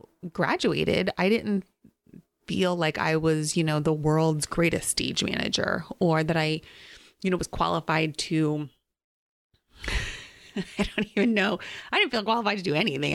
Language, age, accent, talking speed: English, 30-49, American, 150 wpm